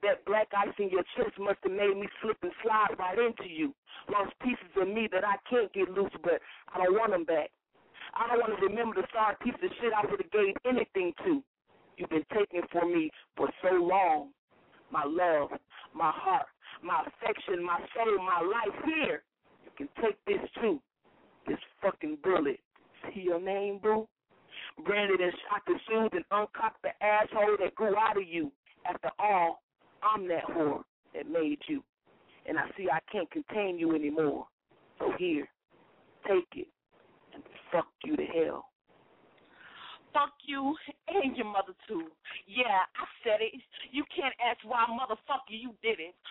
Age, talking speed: 40-59, 175 wpm